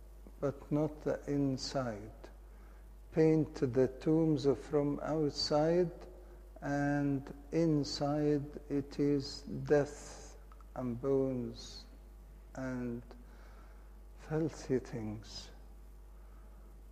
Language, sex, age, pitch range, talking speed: English, male, 60-79, 105-170 Hz, 65 wpm